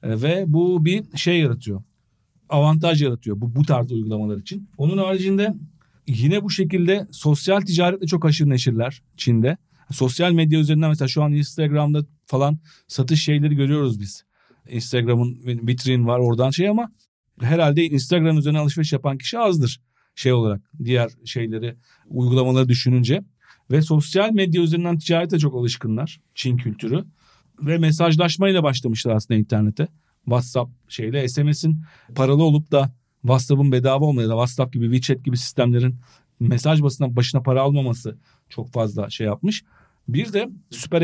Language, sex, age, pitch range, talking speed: Turkish, male, 40-59, 125-160 Hz, 140 wpm